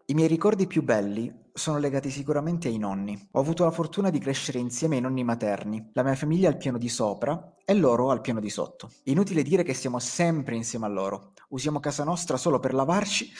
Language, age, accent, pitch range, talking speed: Italian, 30-49, native, 110-140 Hz, 210 wpm